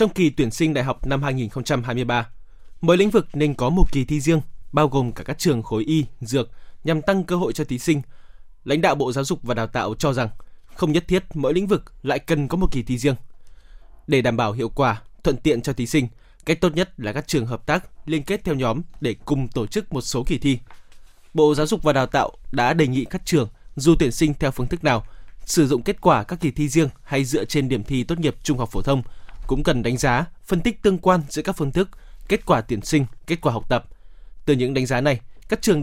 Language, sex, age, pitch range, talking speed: Vietnamese, male, 20-39, 120-160 Hz, 250 wpm